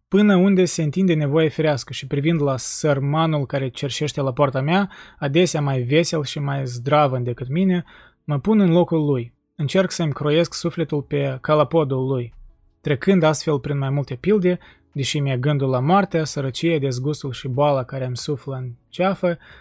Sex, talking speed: male, 165 wpm